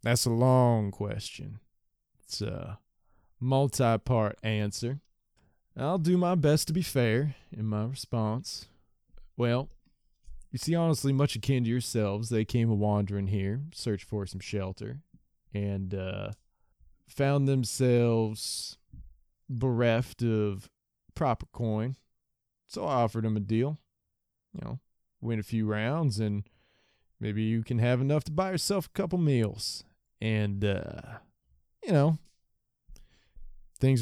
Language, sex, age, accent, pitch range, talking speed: English, male, 20-39, American, 105-130 Hz, 125 wpm